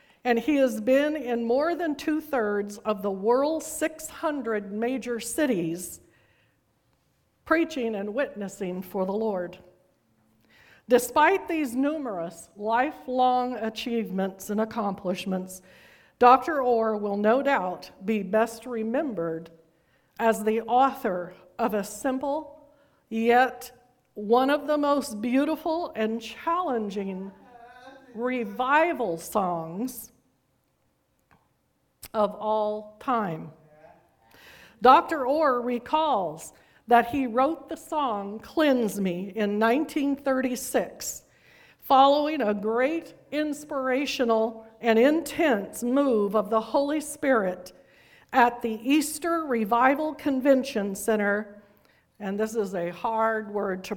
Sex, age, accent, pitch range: female, 50-69, American, 205-275 Hz